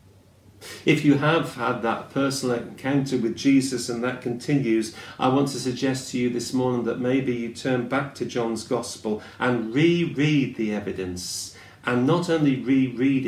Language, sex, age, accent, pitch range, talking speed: English, male, 40-59, British, 105-140 Hz, 165 wpm